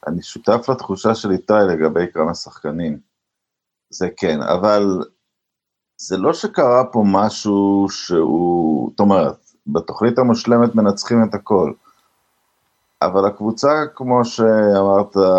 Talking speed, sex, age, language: 110 wpm, male, 50-69, Hebrew